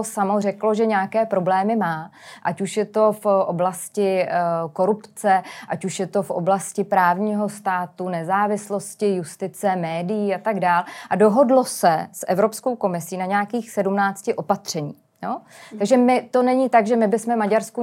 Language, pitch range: Czech, 195-215 Hz